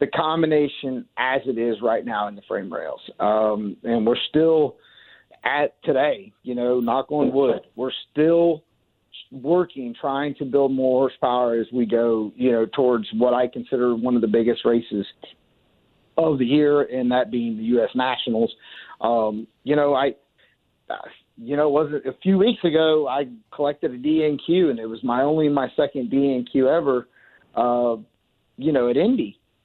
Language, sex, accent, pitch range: English, male, American, 125-155 Hz